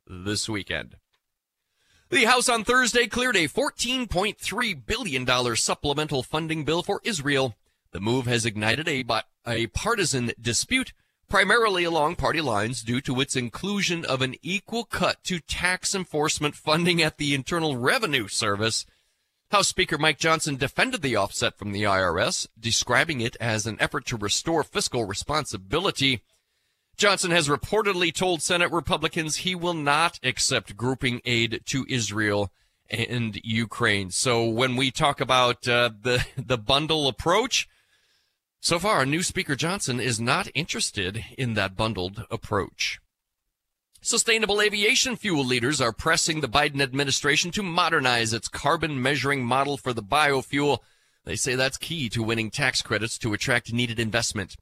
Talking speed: 145 wpm